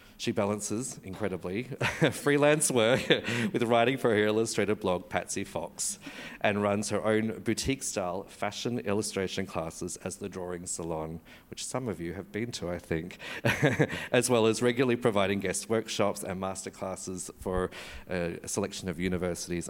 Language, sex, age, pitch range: English, male, 40-59, 90-115 Hz